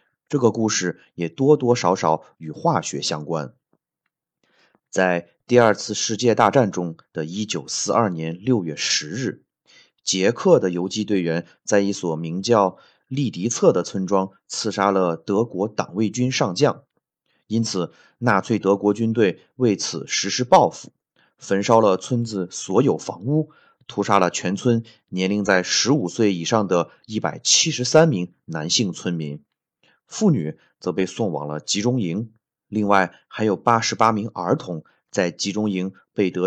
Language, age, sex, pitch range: Chinese, 30-49, male, 90-115 Hz